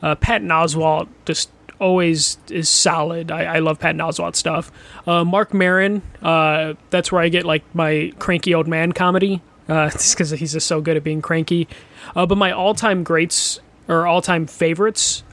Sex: male